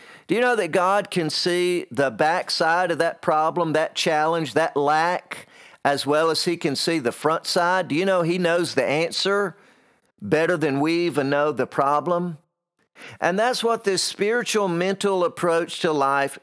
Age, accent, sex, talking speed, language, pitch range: 50-69, American, male, 175 wpm, English, 150-200 Hz